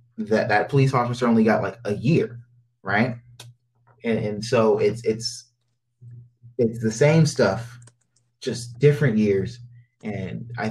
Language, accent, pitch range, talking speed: English, American, 110-125 Hz, 135 wpm